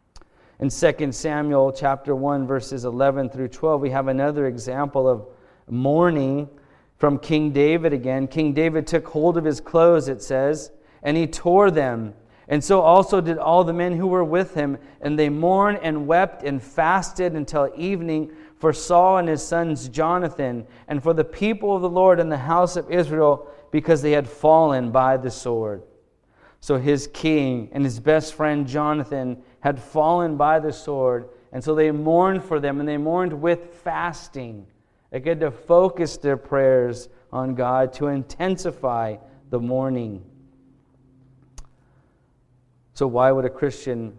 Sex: male